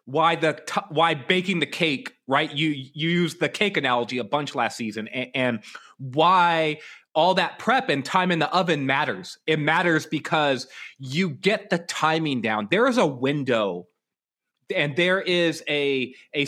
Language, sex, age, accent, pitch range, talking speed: English, male, 30-49, American, 130-170 Hz, 170 wpm